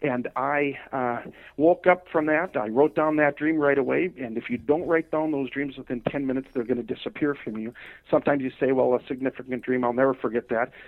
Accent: American